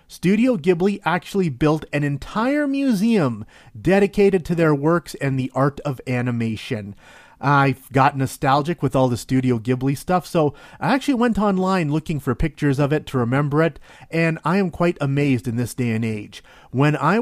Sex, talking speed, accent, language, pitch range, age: male, 180 wpm, American, English, 130-180 Hz, 40-59